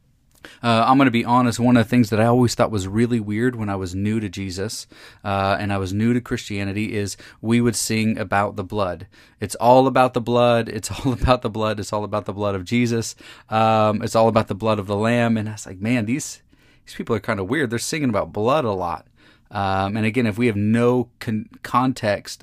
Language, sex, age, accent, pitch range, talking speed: English, male, 30-49, American, 105-120 Hz, 240 wpm